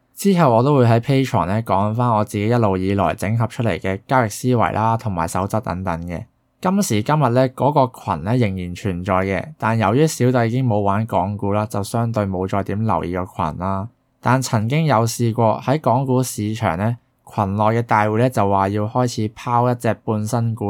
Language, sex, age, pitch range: Chinese, male, 20-39, 100-125 Hz